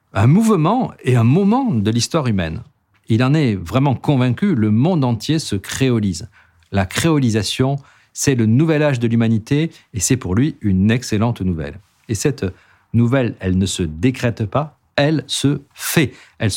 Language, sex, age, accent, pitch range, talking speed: French, male, 50-69, French, 100-140 Hz, 165 wpm